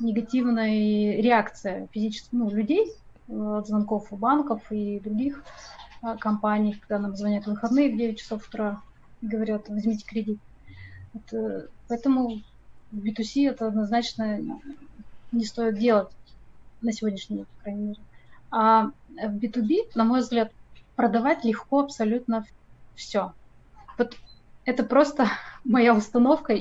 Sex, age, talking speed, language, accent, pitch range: female, 20-39, 120 wpm, Russian, native, 215-245 Hz